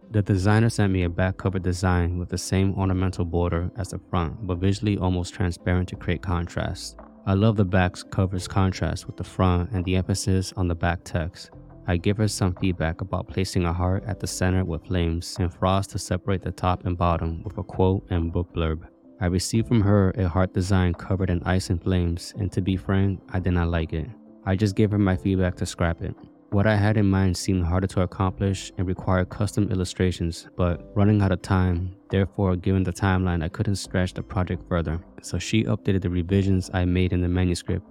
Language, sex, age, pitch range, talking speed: English, male, 20-39, 90-100 Hz, 215 wpm